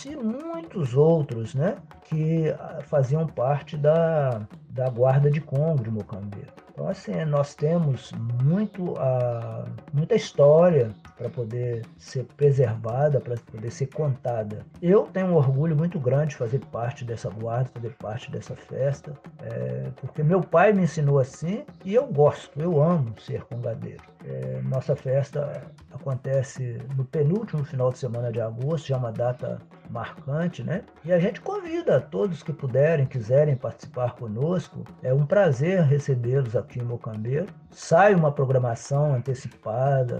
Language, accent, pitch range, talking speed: Portuguese, Brazilian, 125-160 Hz, 145 wpm